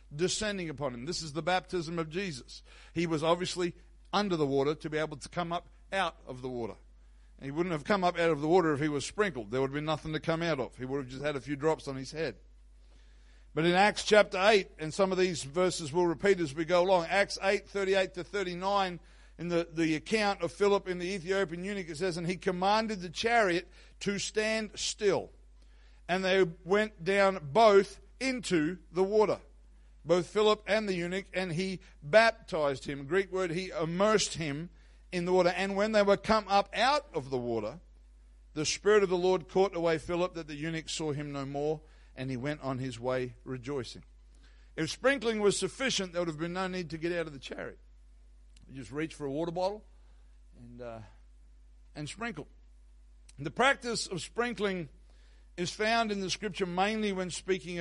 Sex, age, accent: male, 60-79, Australian